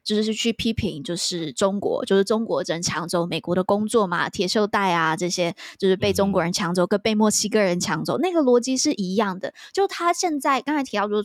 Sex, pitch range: female, 190-240 Hz